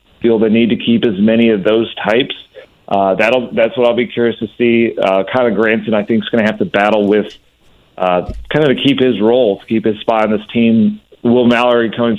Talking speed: 235 wpm